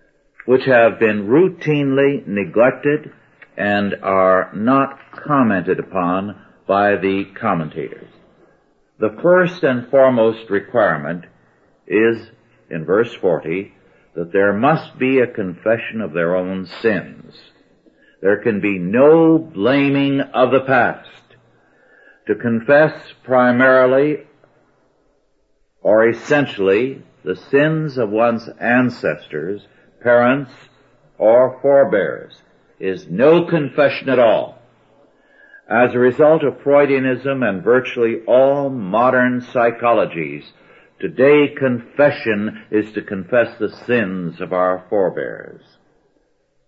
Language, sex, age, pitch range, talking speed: English, male, 60-79, 100-140 Hz, 100 wpm